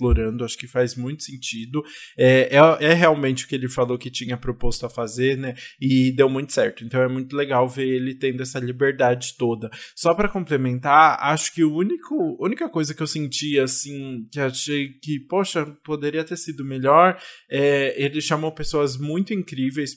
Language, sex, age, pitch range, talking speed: Portuguese, male, 20-39, 125-145 Hz, 180 wpm